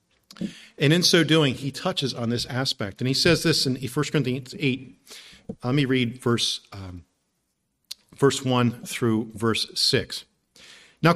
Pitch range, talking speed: 115-160 Hz, 140 wpm